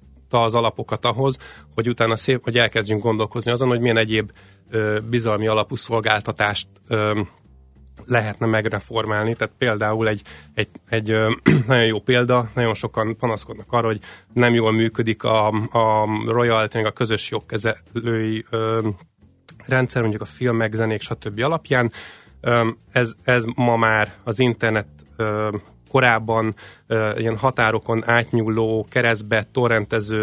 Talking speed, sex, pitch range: 115 wpm, male, 110-120 Hz